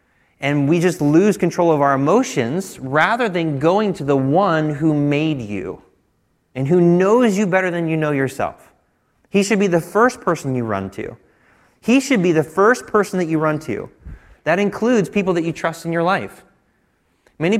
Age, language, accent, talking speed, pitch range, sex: 30-49, English, American, 190 wpm, 150-205 Hz, male